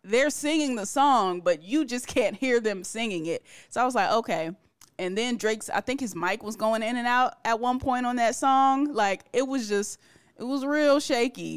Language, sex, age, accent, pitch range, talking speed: English, female, 20-39, American, 180-235 Hz, 225 wpm